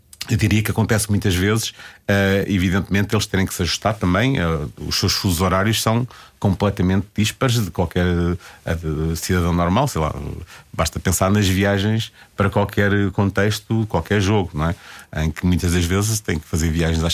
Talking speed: 160 wpm